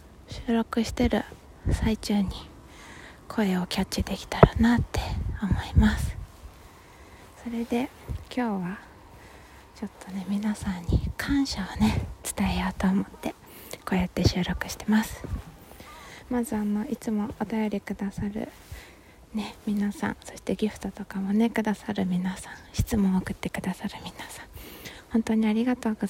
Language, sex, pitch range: Japanese, female, 185-225 Hz